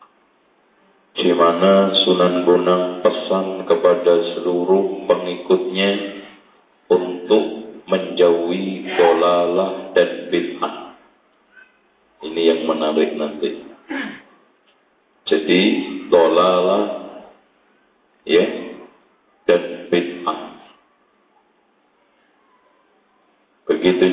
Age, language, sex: 50-69, Malay, male